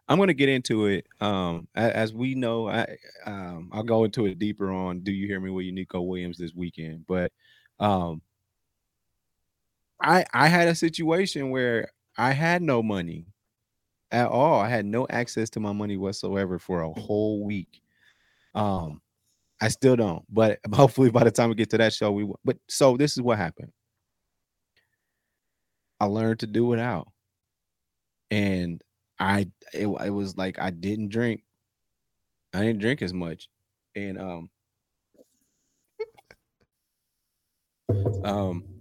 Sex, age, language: male, 30-49, English